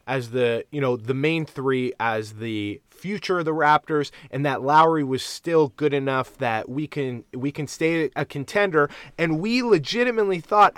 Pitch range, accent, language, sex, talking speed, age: 135-165 Hz, American, English, male, 180 wpm, 20-39